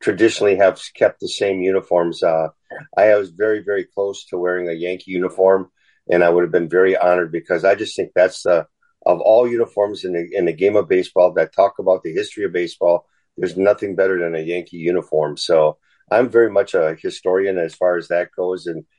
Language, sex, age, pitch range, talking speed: English, male, 50-69, 90-120 Hz, 210 wpm